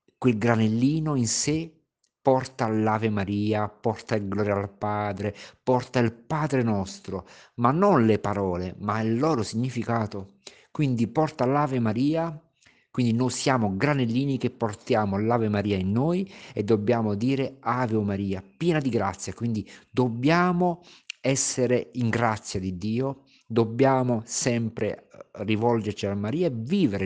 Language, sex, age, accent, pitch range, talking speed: Italian, male, 50-69, native, 100-130 Hz, 135 wpm